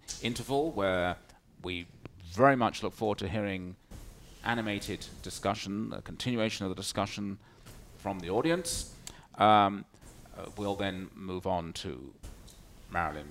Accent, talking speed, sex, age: British, 120 wpm, male, 40-59